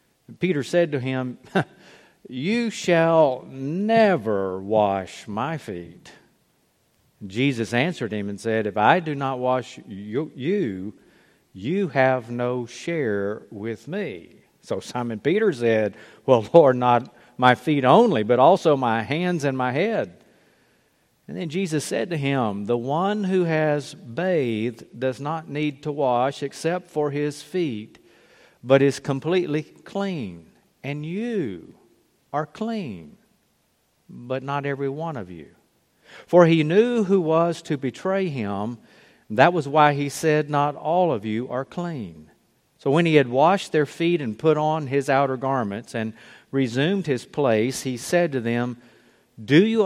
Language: English